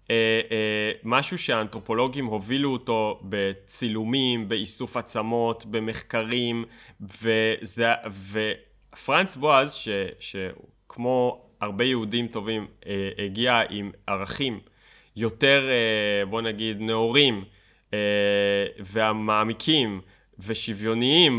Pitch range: 105-130 Hz